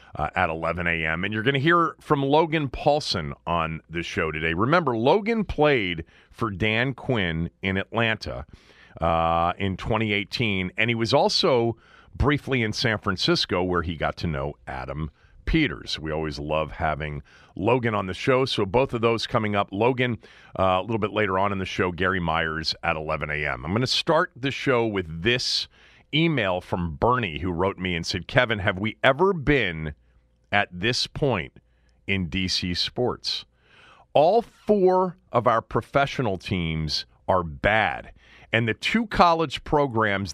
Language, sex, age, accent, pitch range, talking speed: English, male, 40-59, American, 85-125 Hz, 165 wpm